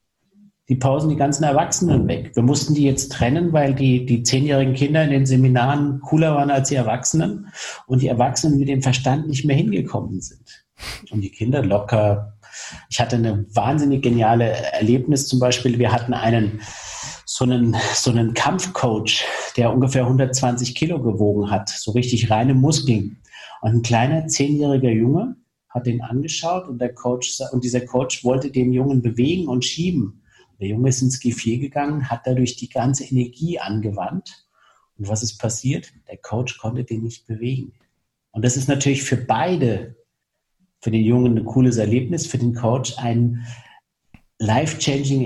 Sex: male